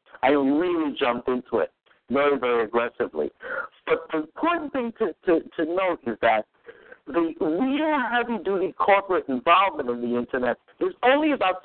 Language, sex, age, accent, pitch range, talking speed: English, male, 60-79, American, 165-275 Hz, 145 wpm